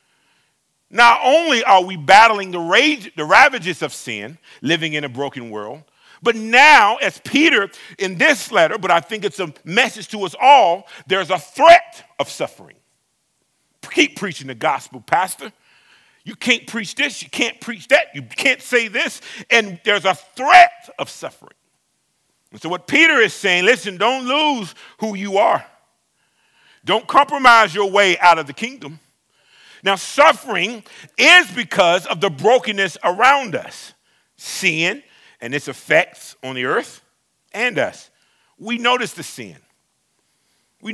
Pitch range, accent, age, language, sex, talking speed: 165-240 Hz, American, 50-69, English, male, 150 wpm